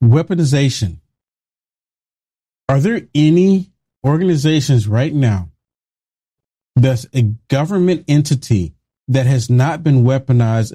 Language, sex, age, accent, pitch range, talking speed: English, male, 40-59, American, 115-165 Hz, 90 wpm